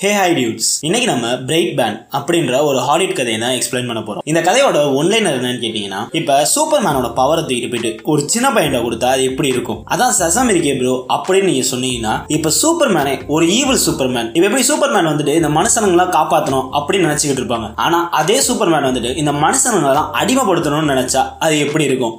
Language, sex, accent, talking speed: Tamil, male, native, 90 wpm